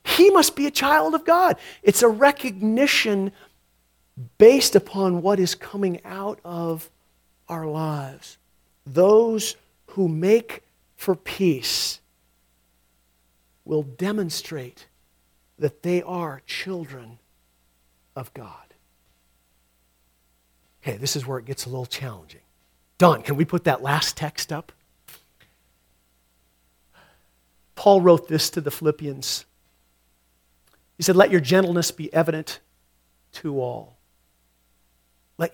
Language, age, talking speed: English, 50-69, 110 wpm